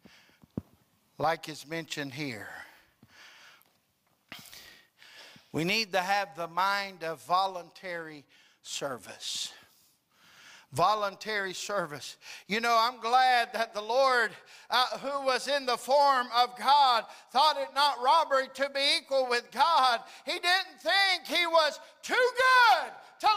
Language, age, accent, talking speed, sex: English, 60-79, American, 120 wpm, male